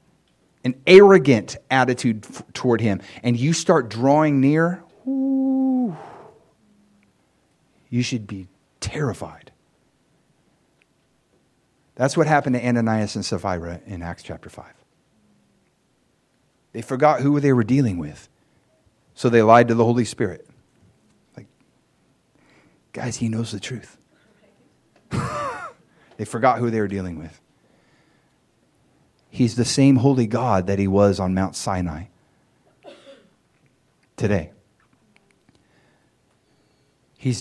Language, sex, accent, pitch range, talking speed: English, male, American, 95-130 Hz, 105 wpm